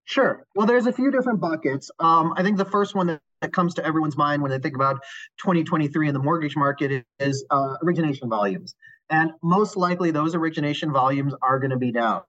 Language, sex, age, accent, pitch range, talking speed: English, male, 30-49, American, 135-180 Hz, 210 wpm